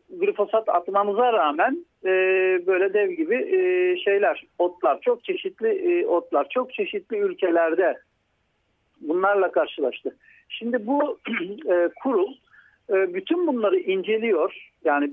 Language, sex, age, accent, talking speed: Turkish, male, 60-79, native, 110 wpm